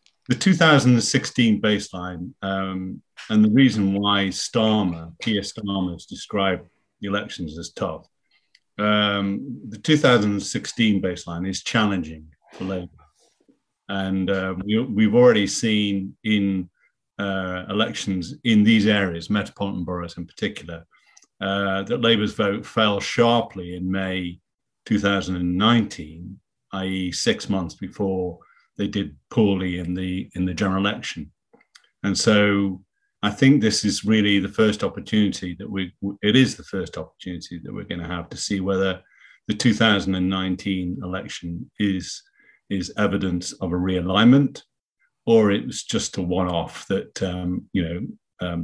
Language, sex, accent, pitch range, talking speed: English, male, British, 90-105 Hz, 130 wpm